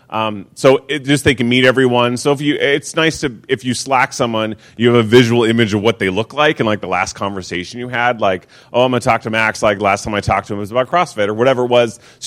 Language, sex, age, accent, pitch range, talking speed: English, male, 30-49, American, 100-125 Hz, 285 wpm